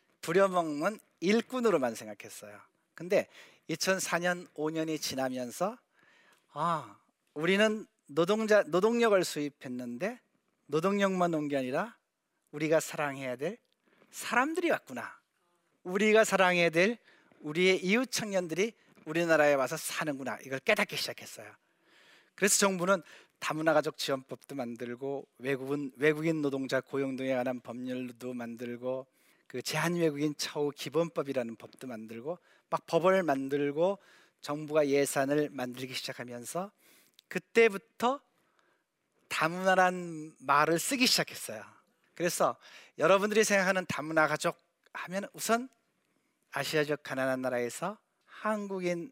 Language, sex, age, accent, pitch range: Korean, male, 40-59, native, 135-190 Hz